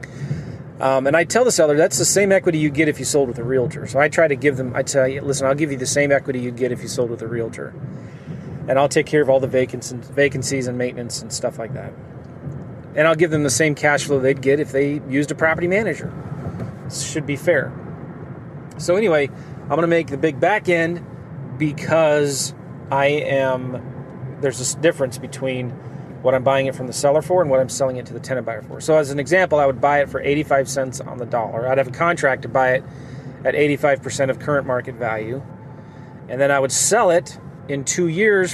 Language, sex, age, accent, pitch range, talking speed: English, male, 30-49, American, 130-155 Hz, 225 wpm